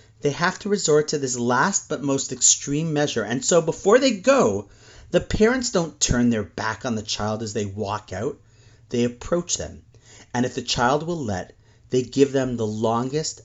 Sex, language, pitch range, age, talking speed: male, English, 110-165 Hz, 30-49, 190 wpm